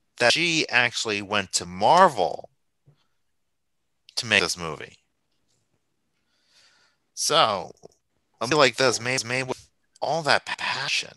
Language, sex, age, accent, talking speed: English, male, 30-49, American, 120 wpm